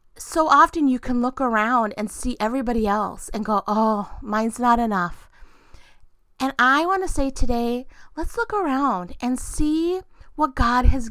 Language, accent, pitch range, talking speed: English, American, 220-285 Hz, 160 wpm